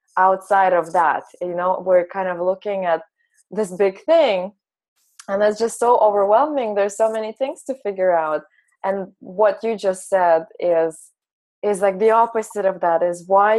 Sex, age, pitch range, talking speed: female, 20-39, 170-215 Hz, 170 wpm